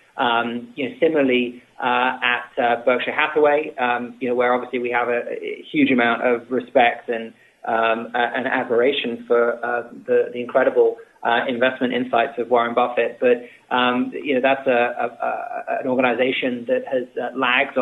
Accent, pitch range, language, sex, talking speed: British, 120-145 Hz, English, male, 175 wpm